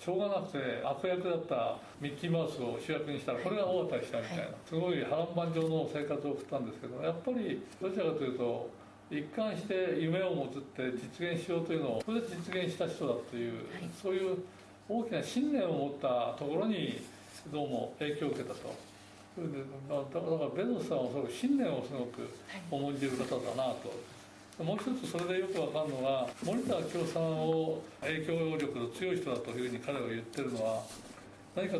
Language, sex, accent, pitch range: Japanese, male, native, 135-190 Hz